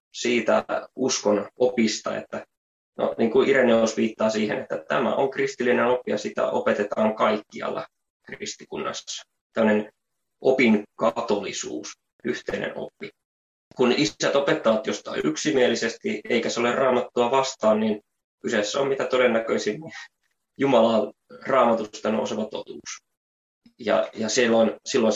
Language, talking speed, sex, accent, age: Finnish, 115 wpm, male, native, 20-39